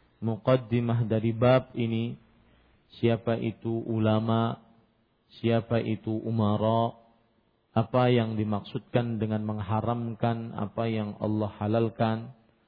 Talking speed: 90 wpm